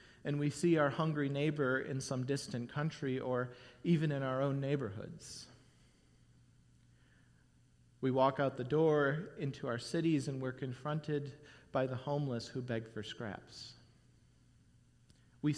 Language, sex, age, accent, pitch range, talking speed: English, male, 40-59, American, 120-150 Hz, 135 wpm